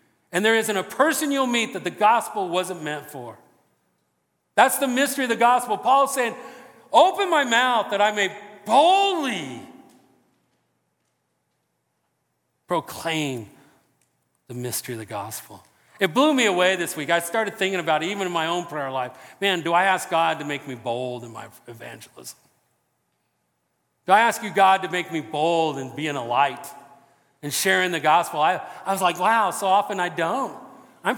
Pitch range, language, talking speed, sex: 170-245 Hz, English, 175 wpm, male